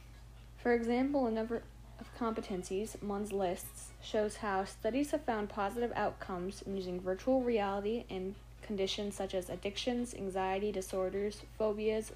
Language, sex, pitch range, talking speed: Arabic, female, 190-230 Hz, 135 wpm